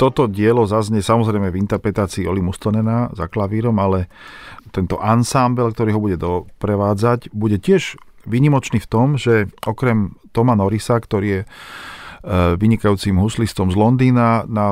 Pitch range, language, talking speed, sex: 95-115 Hz, Slovak, 140 wpm, male